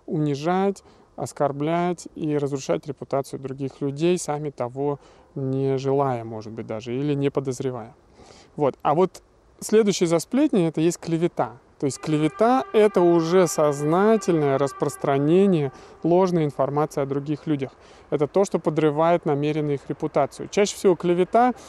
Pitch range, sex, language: 140-180 Hz, male, Russian